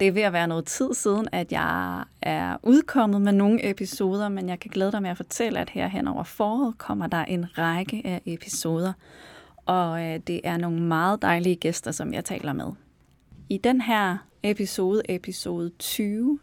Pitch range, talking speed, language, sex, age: 165-205 Hz, 185 wpm, Danish, female, 30-49